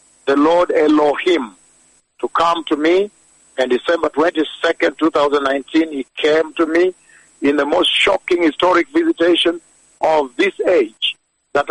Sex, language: male, English